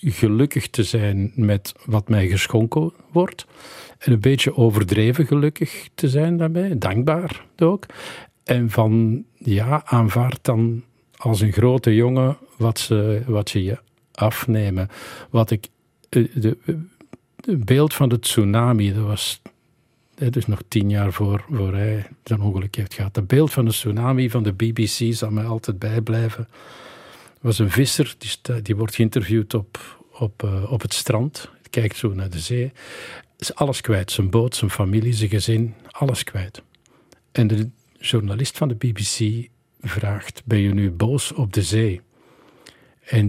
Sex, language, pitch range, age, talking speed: male, Dutch, 105-125 Hz, 50-69, 155 wpm